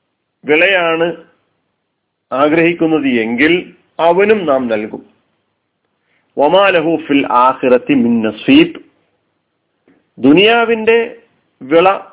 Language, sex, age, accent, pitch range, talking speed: Malayalam, male, 40-59, native, 145-190 Hz, 60 wpm